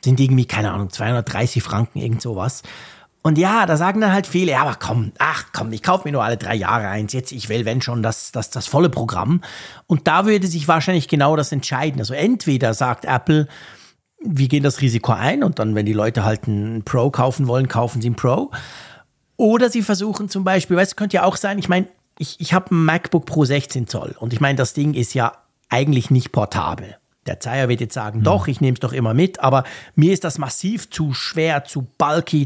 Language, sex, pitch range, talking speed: German, male, 125-175 Hz, 220 wpm